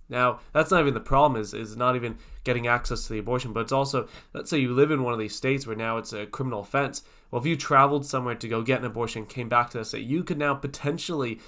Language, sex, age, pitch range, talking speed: English, male, 20-39, 105-125 Hz, 275 wpm